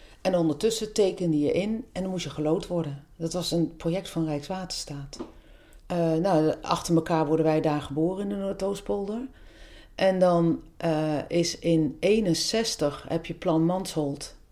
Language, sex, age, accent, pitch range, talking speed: Dutch, female, 40-59, Dutch, 155-190 Hz, 155 wpm